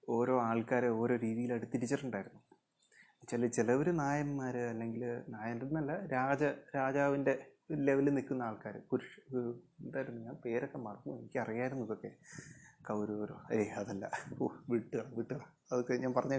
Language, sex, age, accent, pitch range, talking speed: Malayalam, male, 30-49, native, 125-155 Hz, 115 wpm